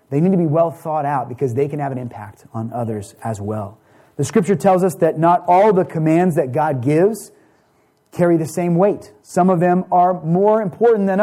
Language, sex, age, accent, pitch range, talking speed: English, male, 30-49, American, 140-180 Hz, 215 wpm